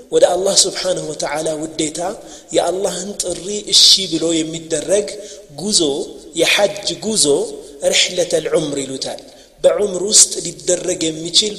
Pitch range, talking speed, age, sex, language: 160-255 Hz, 125 wpm, 30-49, male, Amharic